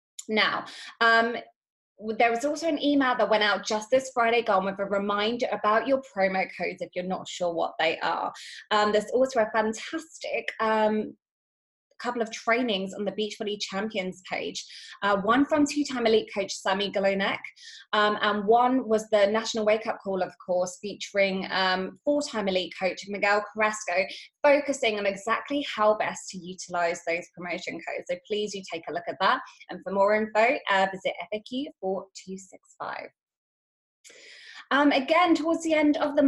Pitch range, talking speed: 190-250 Hz, 160 wpm